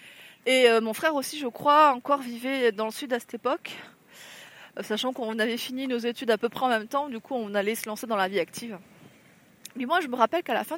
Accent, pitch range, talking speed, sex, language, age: French, 220-275 Hz, 255 wpm, female, French, 20-39